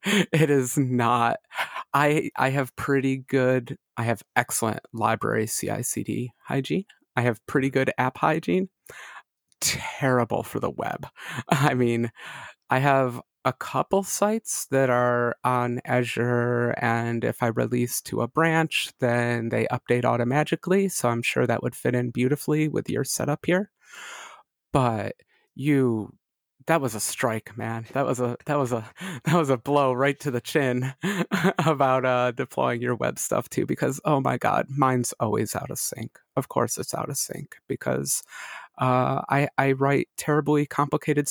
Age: 30-49